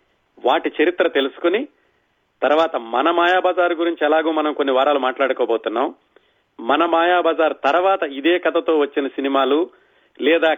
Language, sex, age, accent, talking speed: Telugu, male, 40-59, native, 115 wpm